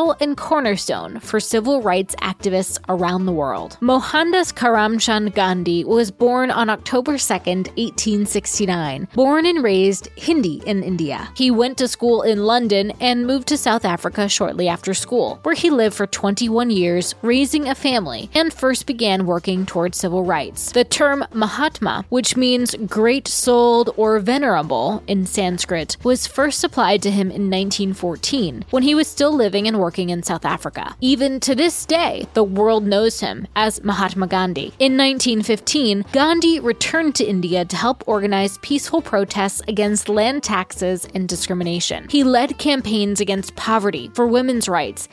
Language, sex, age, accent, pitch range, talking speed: English, female, 20-39, American, 190-255 Hz, 155 wpm